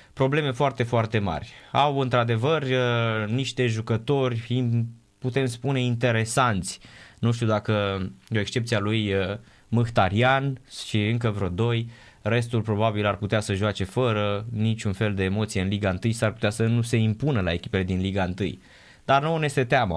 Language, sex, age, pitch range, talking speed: Romanian, male, 20-39, 105-130 Hz, 155 wpm